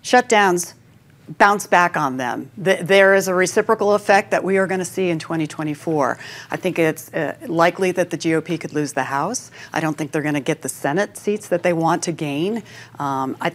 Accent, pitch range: American, 145-190 Hz